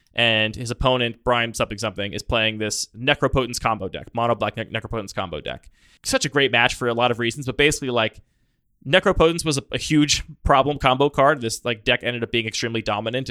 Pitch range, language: 110-140 Hz, English